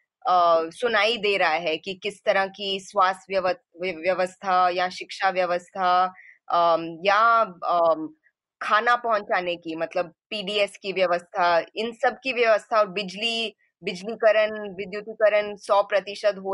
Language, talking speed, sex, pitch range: Hindi, 115 wpm, female, 185-245 Hz